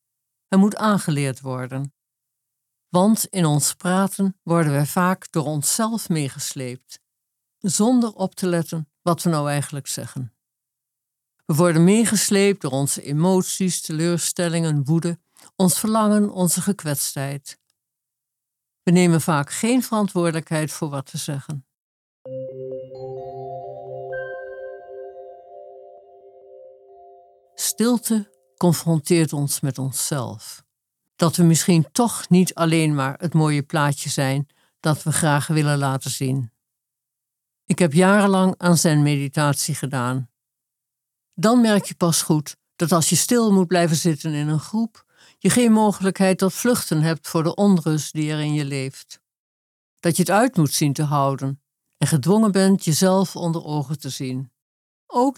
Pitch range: 130-180 Hz